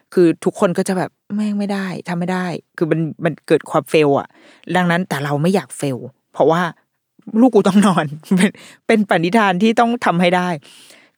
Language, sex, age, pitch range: Thai, female, 20-39, 150-205 Hz